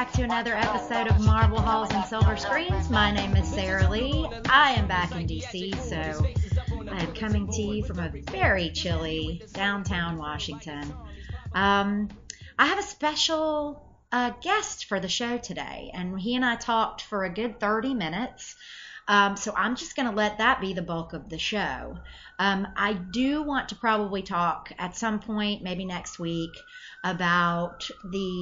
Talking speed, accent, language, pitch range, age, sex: 170 wpm, American, English, 175-245 Hz, 30-49, female